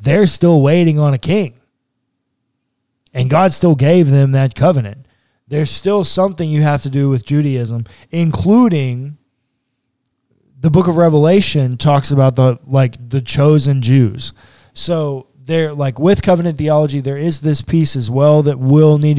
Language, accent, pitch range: English, American, 125-150 Hz